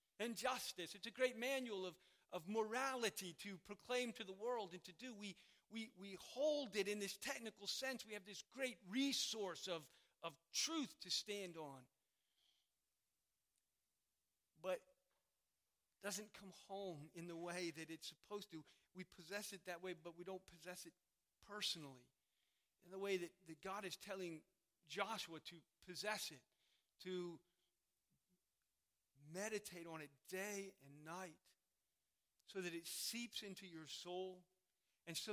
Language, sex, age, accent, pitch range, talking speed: English, male, 40-59, American, 165-205 Hz, 150 wpm